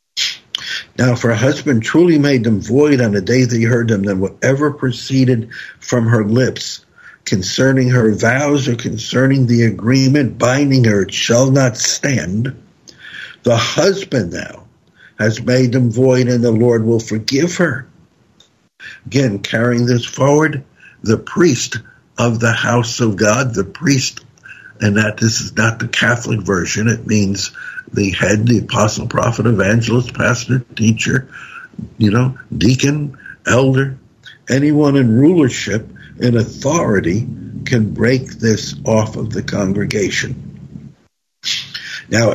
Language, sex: English, male